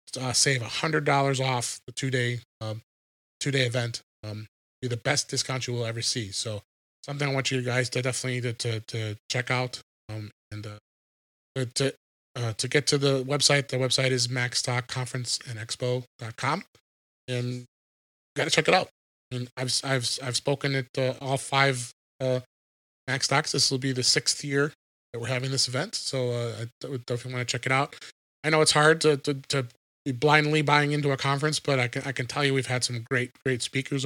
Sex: male